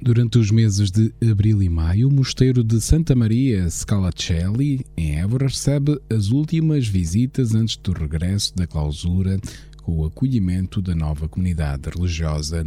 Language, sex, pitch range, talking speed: Portuguese, male, 85-120 Hz, 145 wpm